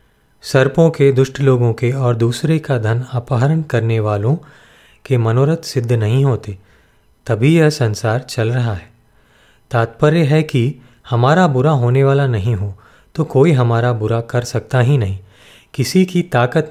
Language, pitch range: Hindi, 115-145 Hz